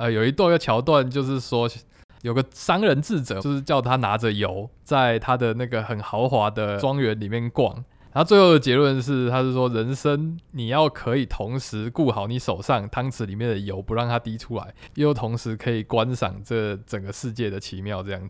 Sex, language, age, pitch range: male, Chinese, 20-39, 110-140 Hz